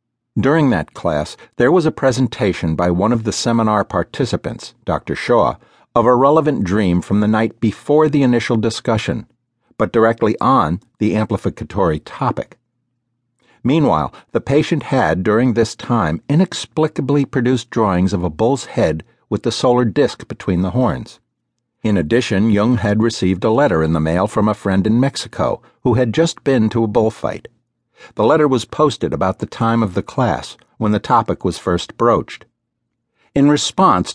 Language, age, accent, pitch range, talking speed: English, 60-79, American, 100-125 Hz, 165 wpm